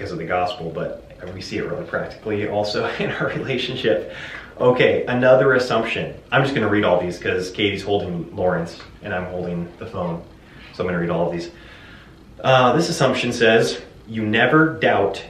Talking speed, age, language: 185 wpm, 30-49, English